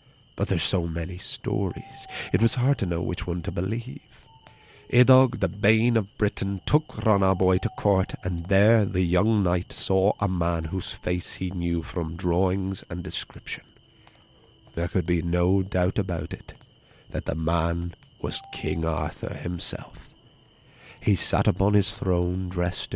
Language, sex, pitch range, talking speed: English, male, 90-120 Hz, 155 wpm